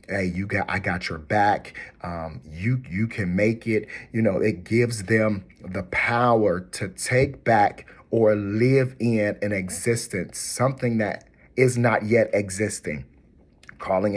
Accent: American